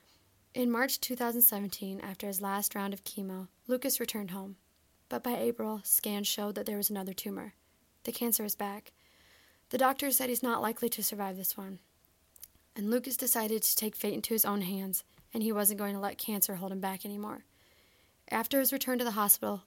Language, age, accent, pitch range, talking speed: English, 20-39, American, 200-235 Hz, 190 wpm